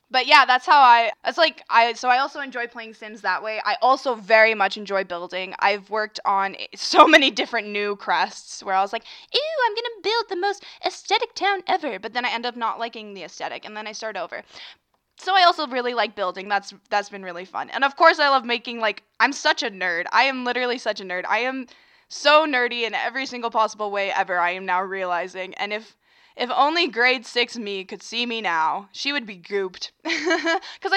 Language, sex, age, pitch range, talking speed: English, female, 10-29, 205-280 Hz, 225 wpm